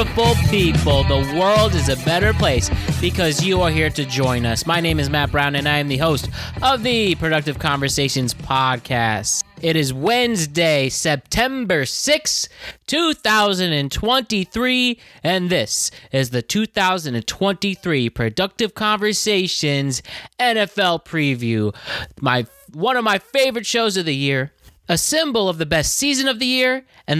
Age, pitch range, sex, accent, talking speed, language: 20-39, 155-210 Hz, male, American, 140 wpm, English